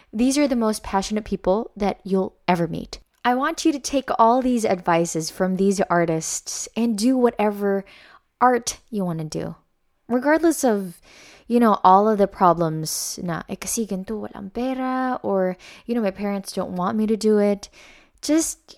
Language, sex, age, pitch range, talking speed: Filipino, female, 20-39, 175-240 Hz, 155 wpm